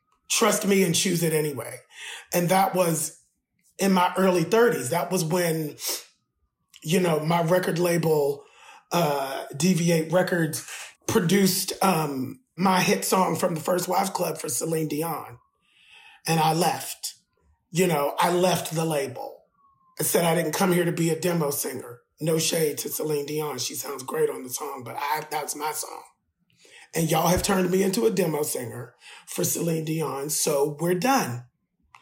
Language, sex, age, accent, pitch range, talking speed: English, male, 30-49, American, 160-190 Hz, 160 wpm